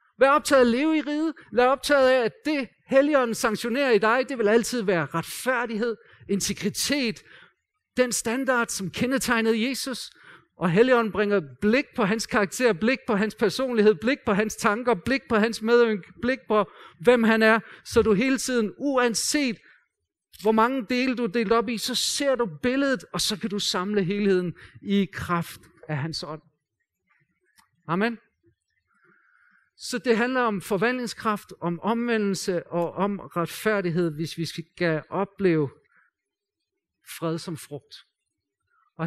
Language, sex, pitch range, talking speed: Danish, male, 170-235 Hz, 150 wpm